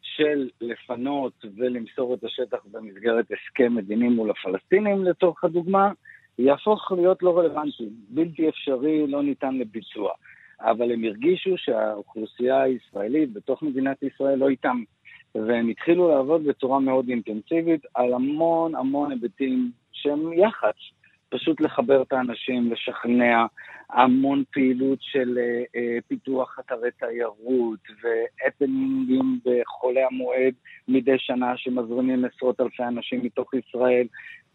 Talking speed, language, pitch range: 115 wpm, Hebrew, 120-140 Hz